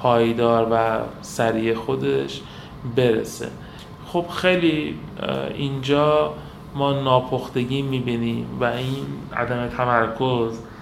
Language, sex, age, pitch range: Persian, male, 30-49, 115-140 Hz